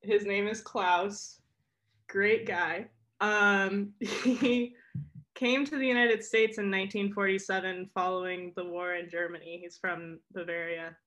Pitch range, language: 165-195 Hz, English